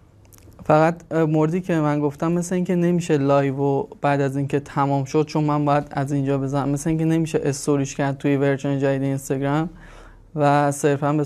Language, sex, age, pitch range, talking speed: Persian, male, 20-39, 140-160 Hz, 175 wpm